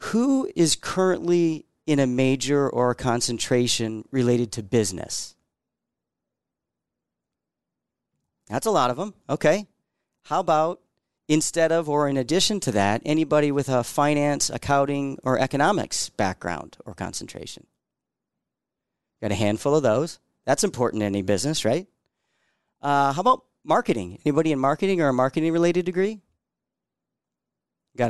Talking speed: 130 wpm